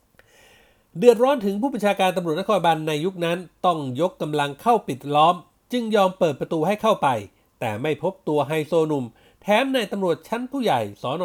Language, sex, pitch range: Thai, male, 145-210 Hz